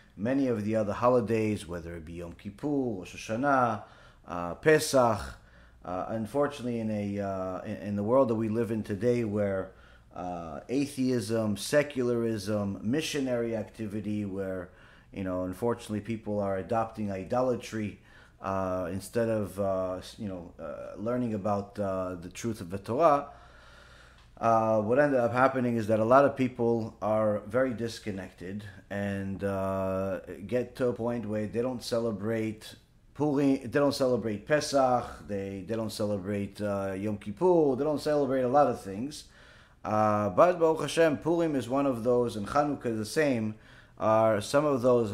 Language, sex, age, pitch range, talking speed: English, male, 30-49, 100-125 Hz, 155 wpm